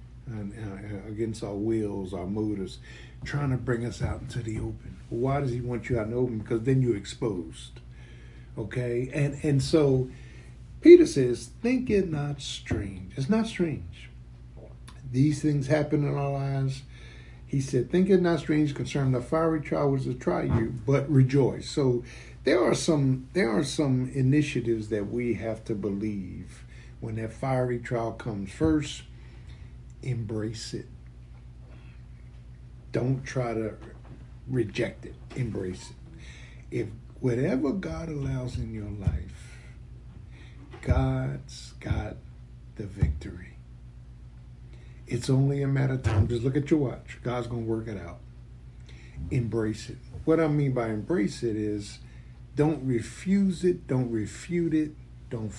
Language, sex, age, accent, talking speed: English, male, 50-69, American, 145 wpm